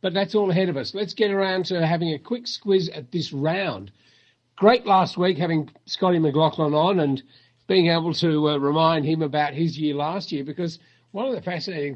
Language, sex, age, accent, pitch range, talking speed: English, male, 50-69, Australian, 140-180 Hz, 205 wpm